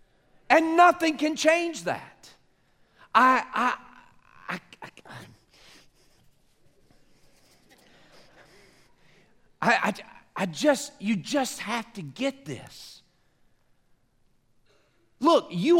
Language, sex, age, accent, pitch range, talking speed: English, male, 50-69, American, 235-315 Hz, 75 wpm